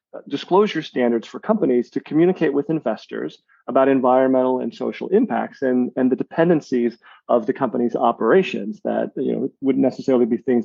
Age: 40-59